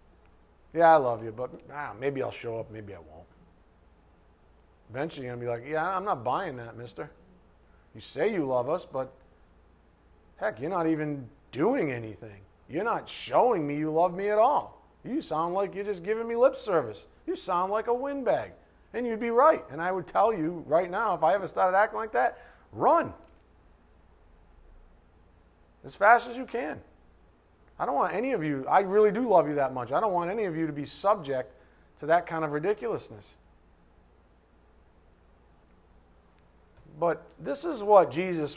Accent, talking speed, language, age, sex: American, 180 wpm, English, 40-59, male